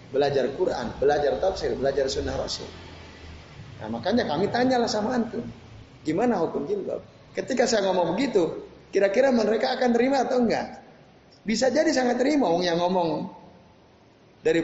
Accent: native